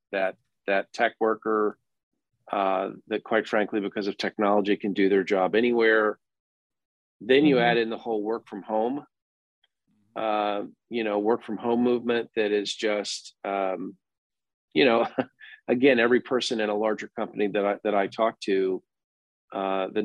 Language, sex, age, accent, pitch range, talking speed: English, male, 40-59, American, 100-110 Hz, 160 wpm